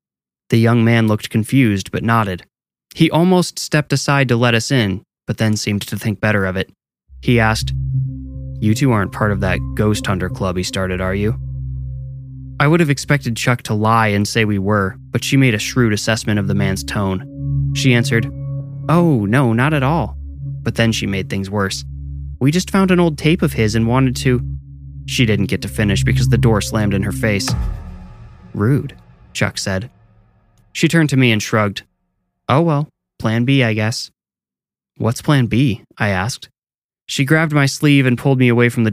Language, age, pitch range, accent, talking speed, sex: English, 20-39, 100-140 Hz, American, 195 wpm, male